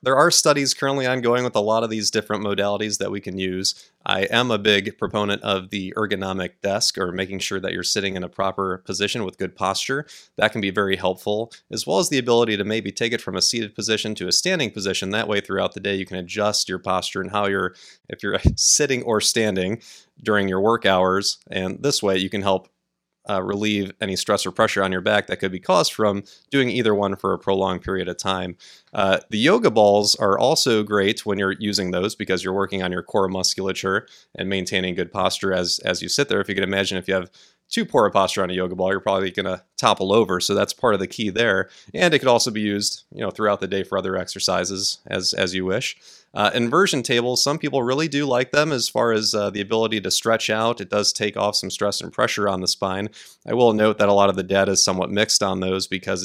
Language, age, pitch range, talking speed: English, 30-49, 95-110 Hz, 245 wpm